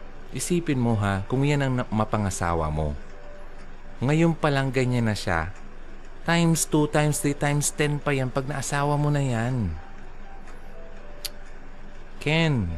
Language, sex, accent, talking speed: Filipino, male, native, 125 wpm